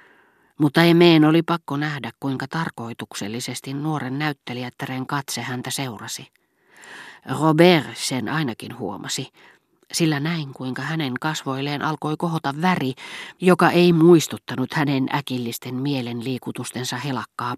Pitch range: 130-170 Hz